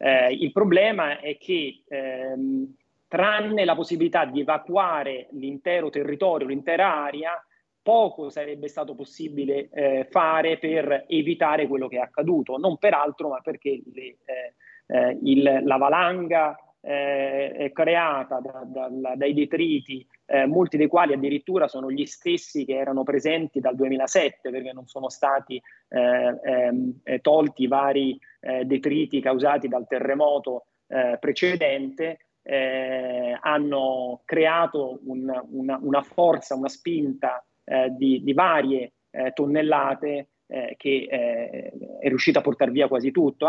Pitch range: 130-160 Hz